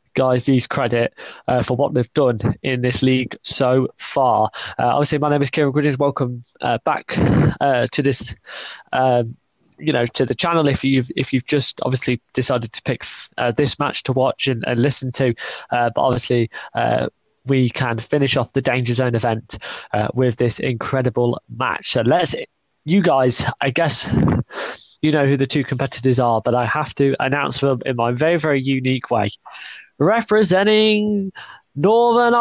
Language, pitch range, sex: English, 125-210 Hz, male